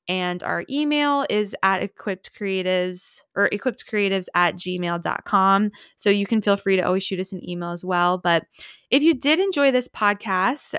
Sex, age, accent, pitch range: female, 20-39, American, 185-235 Hz